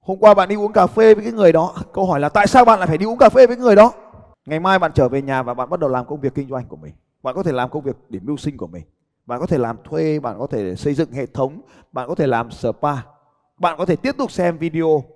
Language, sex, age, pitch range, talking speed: Vietnamese, male, 20-39, 150-225 Hz, 310 wpm